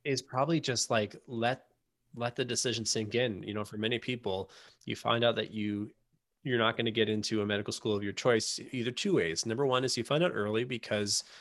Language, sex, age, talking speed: English, male, 20-39, 225 wpm